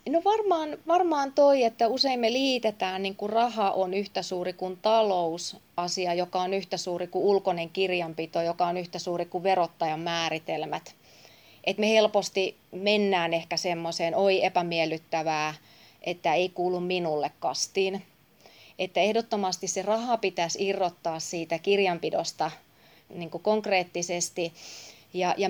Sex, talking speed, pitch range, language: female, 125 wpm, 175-205 Hz, Finnish